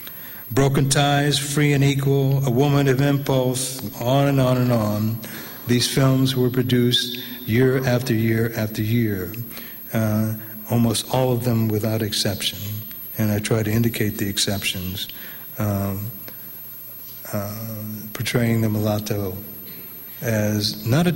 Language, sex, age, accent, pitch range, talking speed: English, male, 60-79, American, 110-135 Hz, 130 wpm